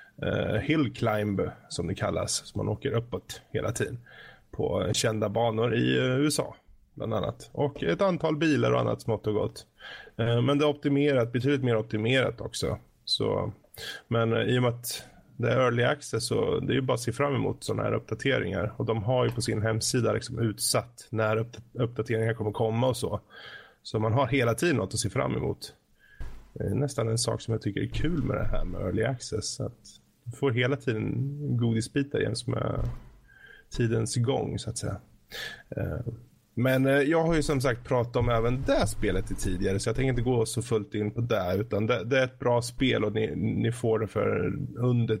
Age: 20-39